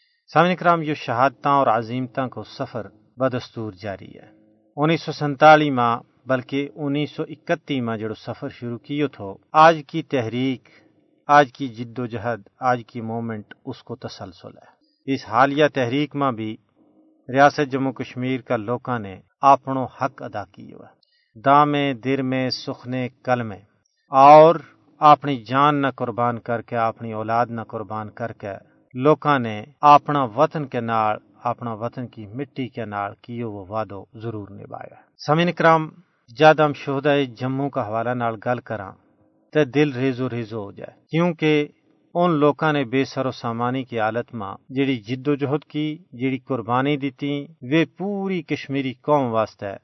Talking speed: 160 wpm